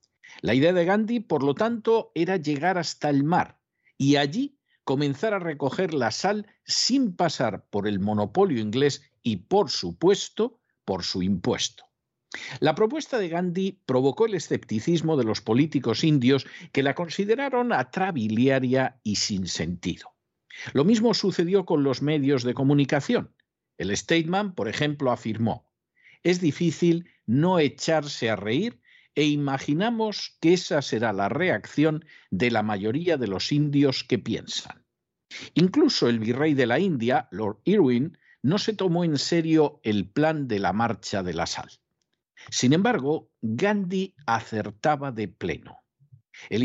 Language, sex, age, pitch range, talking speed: Spanish, male, 50-69, 125-185 Hz, 145 wpm